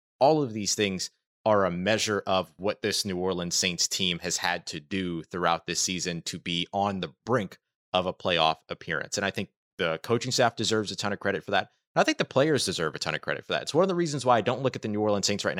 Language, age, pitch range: English, 30-49, 90-115 Hz